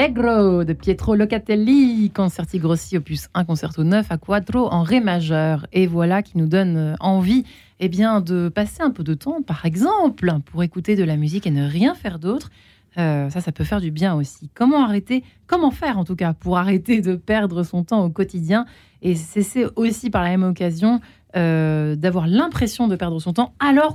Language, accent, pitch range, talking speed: French, French, 170-215 Hz, 200 wpm